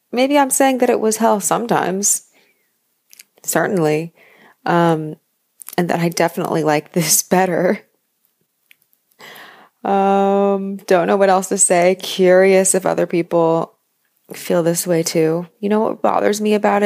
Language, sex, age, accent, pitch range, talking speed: English, female, 20-39, American, 160-195 Hz, 135 wpm